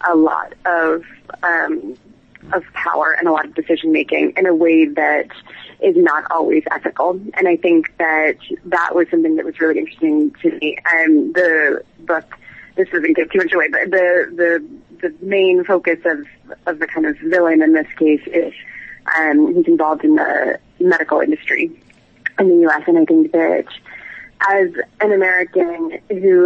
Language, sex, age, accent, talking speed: English, female, 20-39, American, 165 wpm